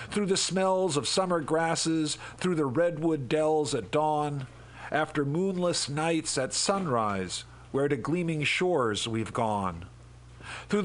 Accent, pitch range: American, 120-170 Hz